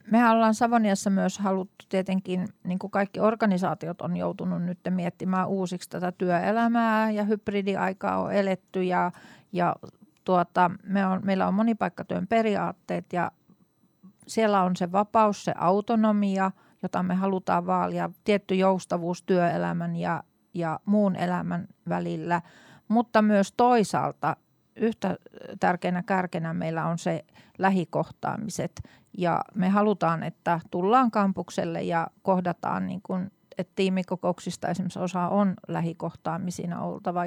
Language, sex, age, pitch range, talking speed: Finnish, female, 40-59, 175-200 Hz, 115 wpm